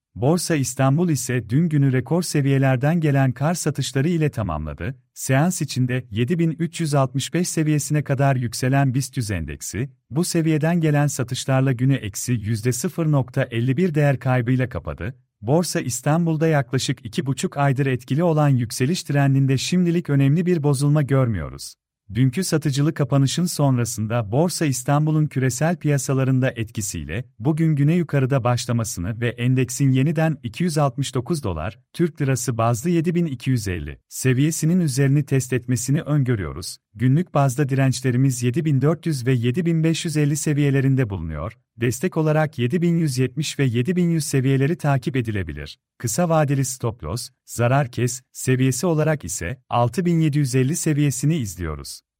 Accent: native